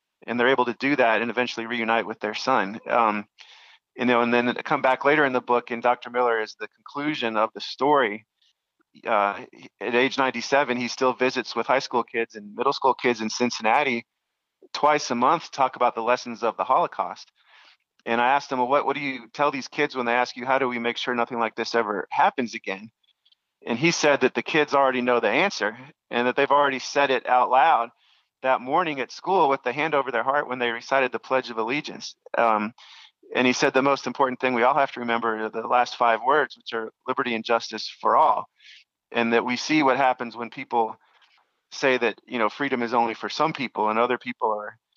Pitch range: 115-135 Hz